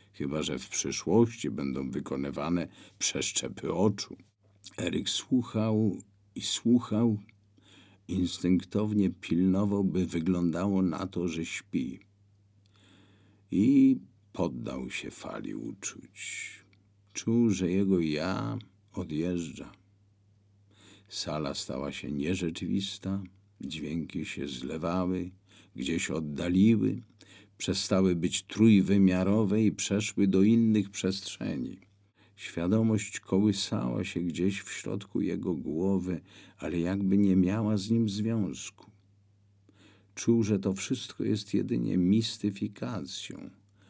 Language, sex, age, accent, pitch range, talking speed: Polish, male, 50-69, native, 90-100 Hz, 95 wpm